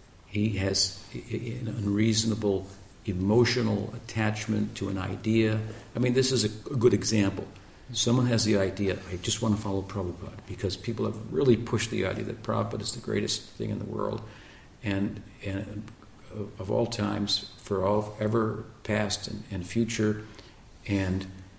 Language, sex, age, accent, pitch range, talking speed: English, male, 50-69, American, 95-110 Hz, 155 wpm